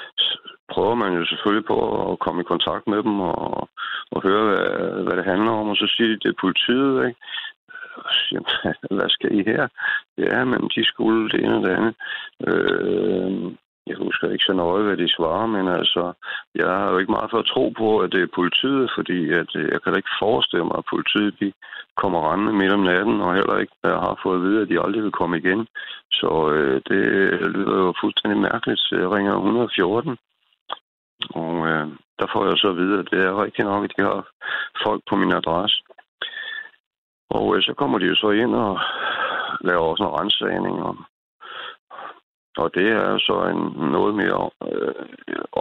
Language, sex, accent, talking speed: Danish, male, native, 195 wpm